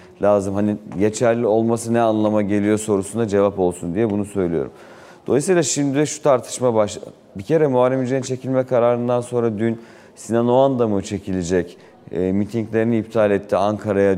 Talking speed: 150 wpm